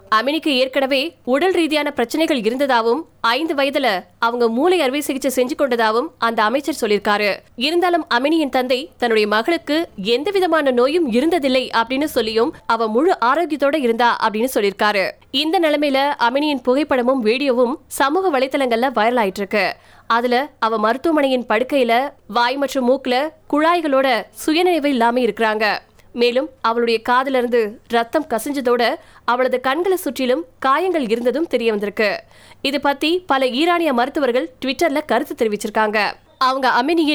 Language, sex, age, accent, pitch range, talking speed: Tamil, female, 20-39, native, 235-300 Hz, 100 wpm